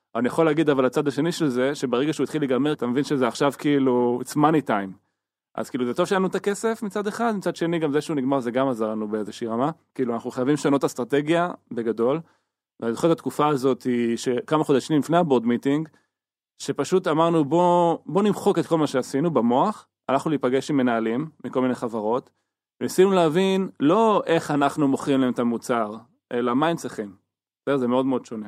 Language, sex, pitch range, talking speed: Hebrew, male, 120-155 Hz, 160 wpm